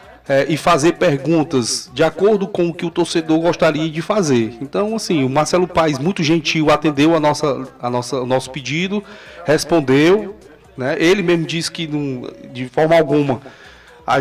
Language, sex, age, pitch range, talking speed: Portuguese, male, 20-39, 135-165 Hz, 170 wpm